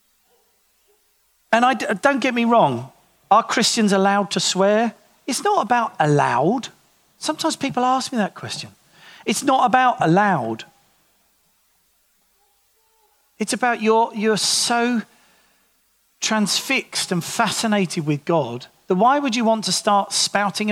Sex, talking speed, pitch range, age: male, 125 wpm, 155-240 Hz, 40-59